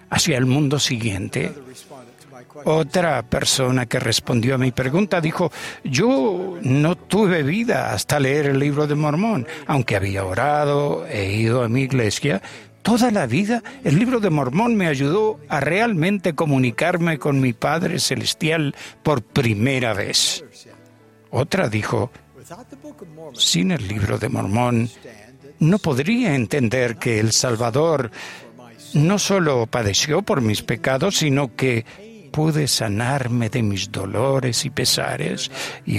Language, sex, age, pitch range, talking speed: Spanish, male, 60-79, 120-170 Hz, 130 wpm